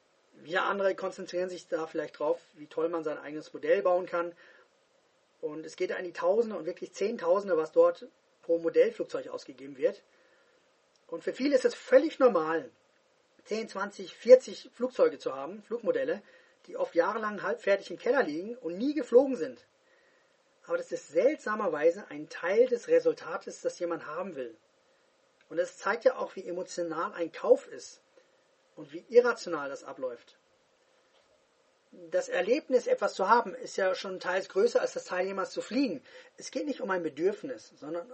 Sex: male